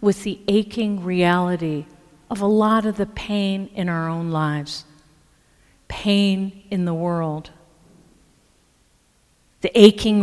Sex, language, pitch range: female, English, 170-220 Hz